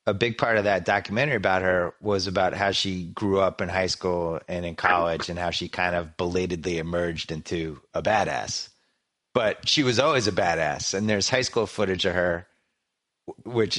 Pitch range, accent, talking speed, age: 90-120 Hz, American, 190 wpm, 30-49